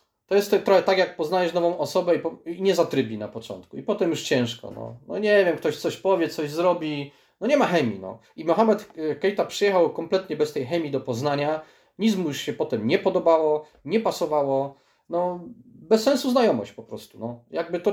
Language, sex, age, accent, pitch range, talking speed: Polish, male, 30-49, native, 140-190 Hz, 195 wpm